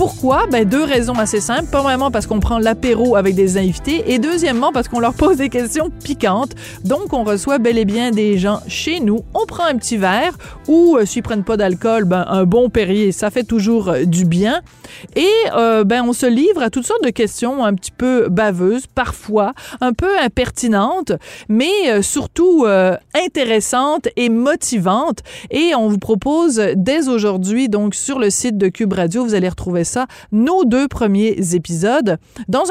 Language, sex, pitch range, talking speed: French, female, 205-260 Hz, 190 wpm